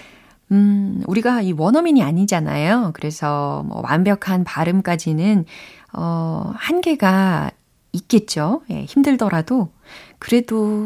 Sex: female